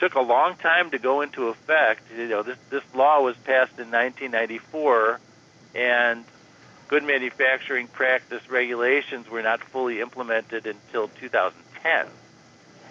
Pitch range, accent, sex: 120-145 Hz, American, male